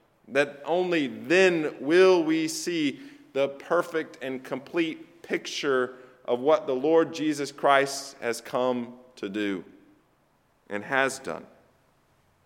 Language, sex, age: English, male, 40-59